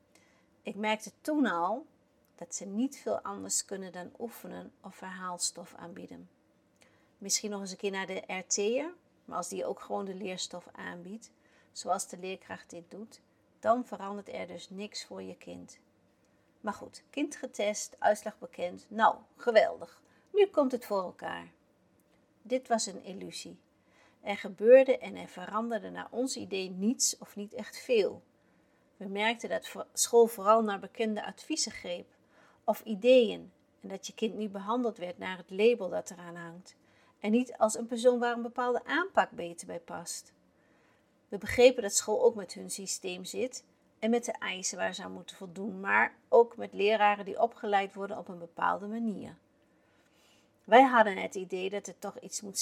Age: 50-69